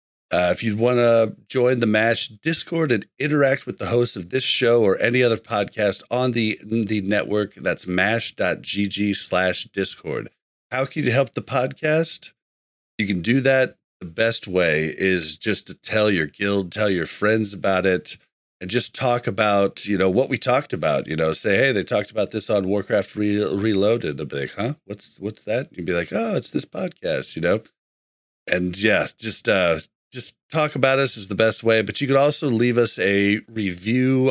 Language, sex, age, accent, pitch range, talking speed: English, male, 40-59, American, 100-125 Hz, 190 wpm